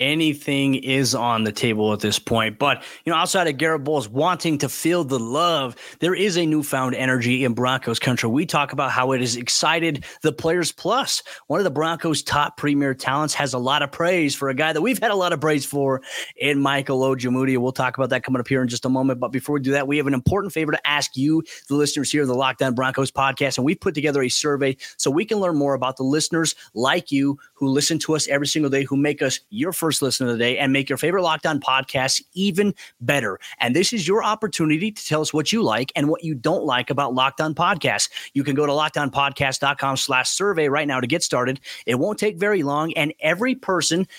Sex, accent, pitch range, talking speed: male, American, 130-155 Hz, 235 wpm